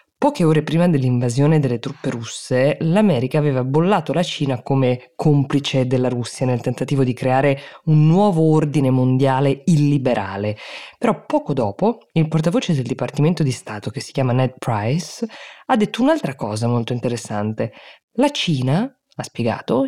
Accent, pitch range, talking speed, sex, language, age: native, 125-160 Hz, 150 wpm, female, Italian, 20-39